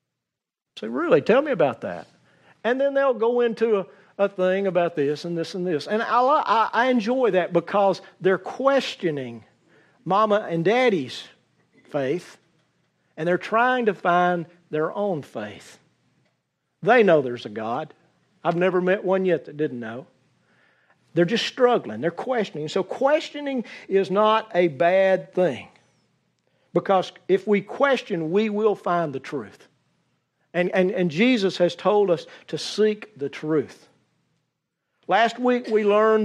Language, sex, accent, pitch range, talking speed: English, male, American, 170-215 Hz, 150 wpm